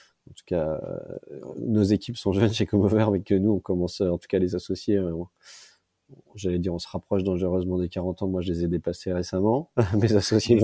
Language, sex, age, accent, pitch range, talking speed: French, male, 30-49, French, 90-100 Hz, 205 wpm